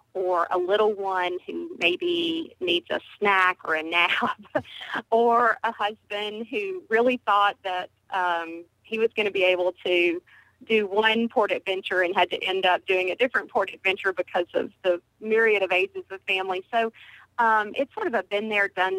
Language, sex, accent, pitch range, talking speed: English, female, American, 180-225 Hz, 185 wpm